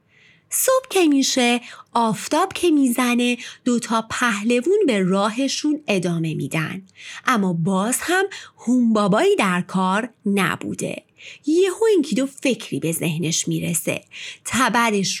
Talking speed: 105 wpm